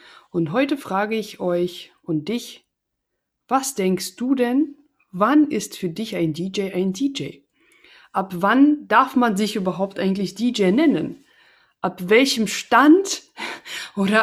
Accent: German